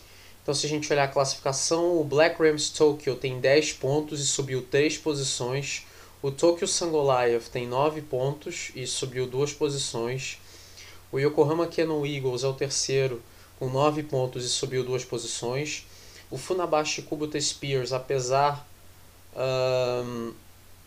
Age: 20-39